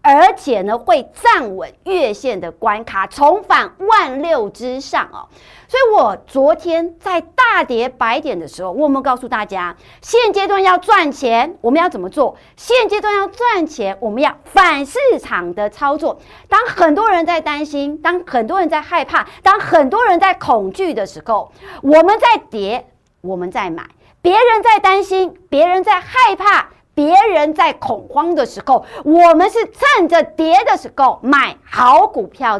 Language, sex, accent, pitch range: Chinese, female, American, 260-380 Hz